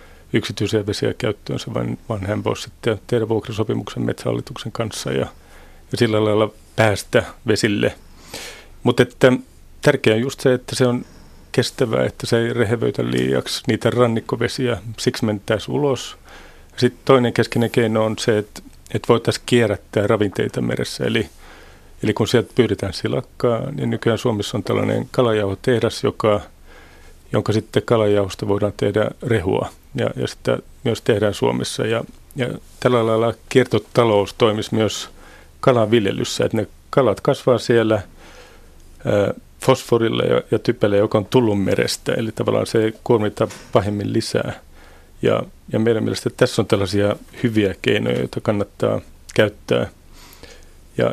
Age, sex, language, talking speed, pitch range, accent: 30-49, male, Finnish, 135 wpm, 95-120 Hz, native